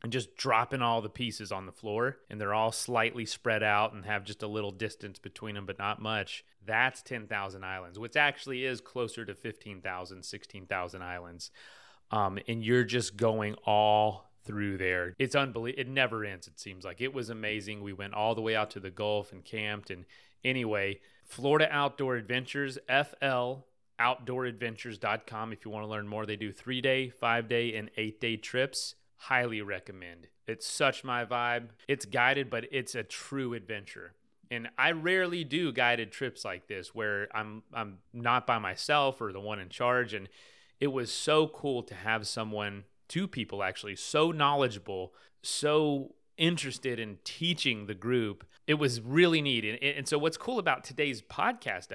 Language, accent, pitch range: English, American, 105-130 Hz